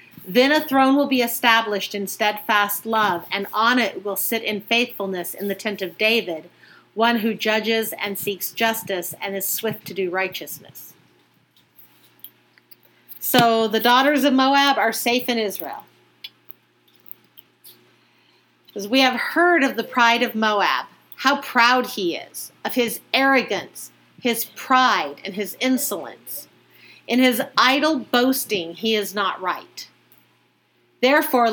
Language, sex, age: English, female, 40-59